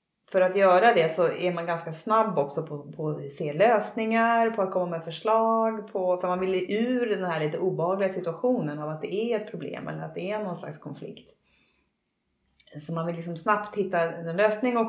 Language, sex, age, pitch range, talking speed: Swedish, female, 30-49, 155-190 Hz, 210 wpm